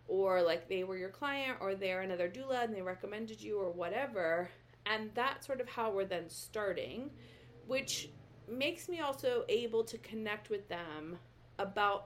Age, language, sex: 30-49, English, female